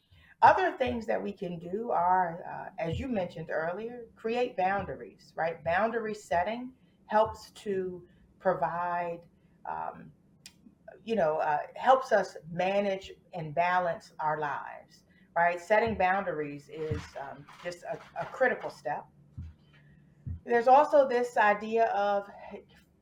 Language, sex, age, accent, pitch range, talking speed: English, female, 40-59, American, 175-220 Hz, 120 wpm